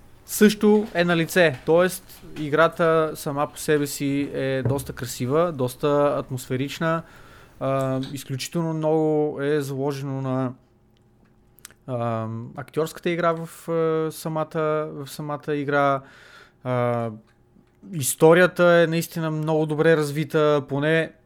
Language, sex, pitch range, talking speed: Bulgarian, male, 125-155 Hz, 105 wpm